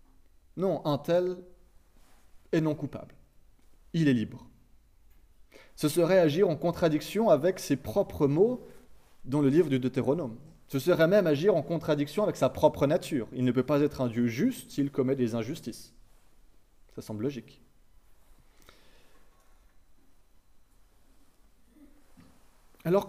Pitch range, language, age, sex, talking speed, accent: 110-160 Hz, French, 30-49, male, 125 wpm, French